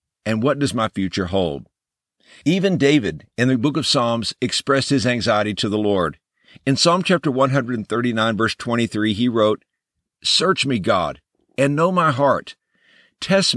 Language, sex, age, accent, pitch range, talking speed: English, male, 50-69, American, 115-165 Hz, 155 wpm